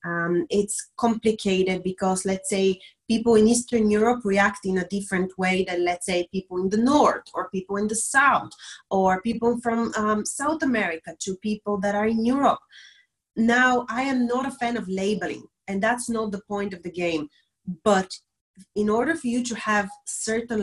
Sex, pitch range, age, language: female, 185-225 Hz, 30-49, English